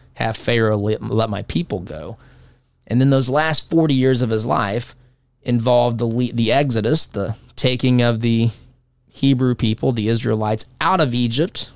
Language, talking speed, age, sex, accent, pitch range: English, 160 wpm, 20-39, male, American, 115-140 Hz